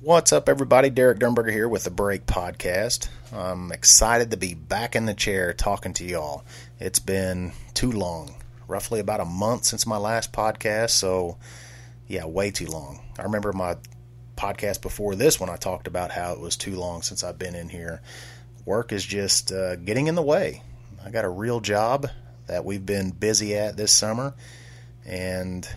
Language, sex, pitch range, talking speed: English, male, 95-120 Hz, 185 wpm